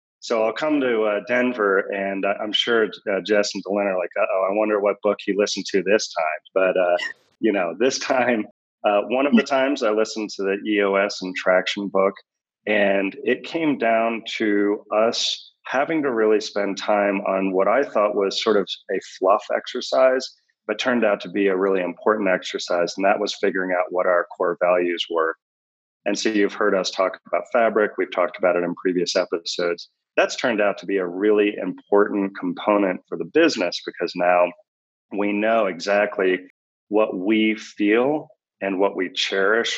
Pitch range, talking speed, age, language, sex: 95-110 Hz, 190 wpm, 40-59, English, male